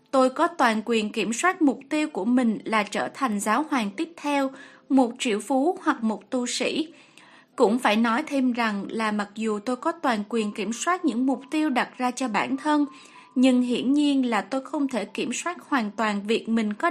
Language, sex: Vietnamese, female